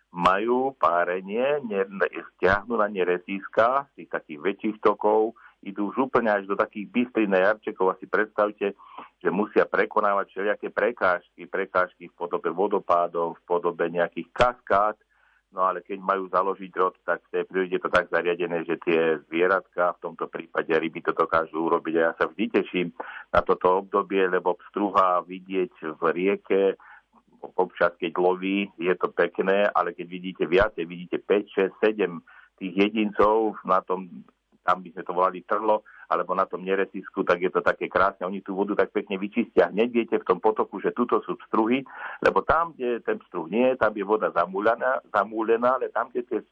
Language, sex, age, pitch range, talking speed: Slovak, male, 50-69, 90-110 Hz, 170 wpm